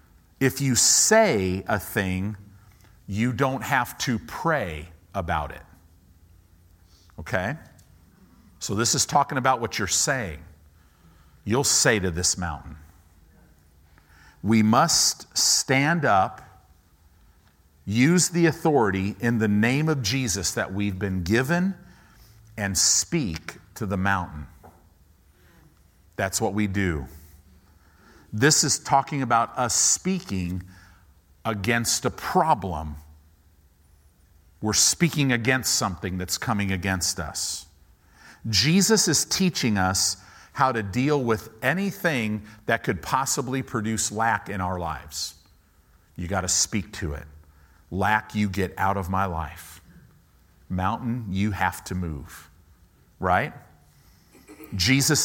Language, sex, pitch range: English, male, 85-115 Hz